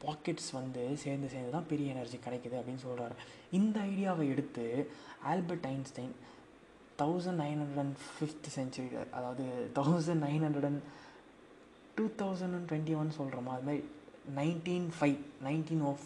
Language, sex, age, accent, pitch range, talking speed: Tamil, male, 20-39, native, 130-160 Hz, 100 wpm